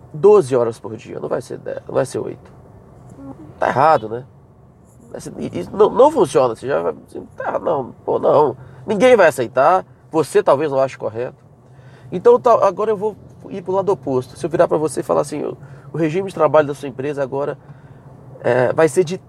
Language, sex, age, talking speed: Portuguese, male, 30-49, 200 wpm